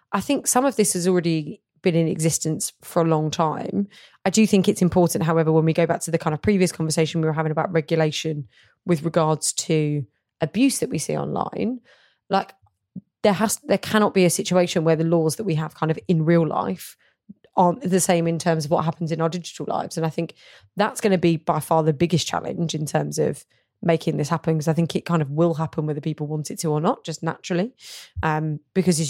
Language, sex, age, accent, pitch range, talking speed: English, female, 20-39, British, 160-180 Hz, 230 wpm